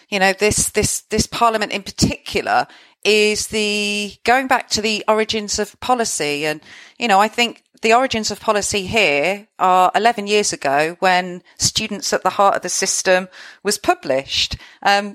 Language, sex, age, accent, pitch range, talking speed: English, female, 40-59, British, 180-225 Hz, 165 wpm